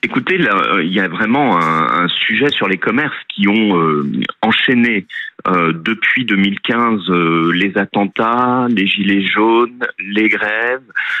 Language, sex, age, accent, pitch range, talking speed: French, male, 40-59, French, 95-130 Hz, 145 wpm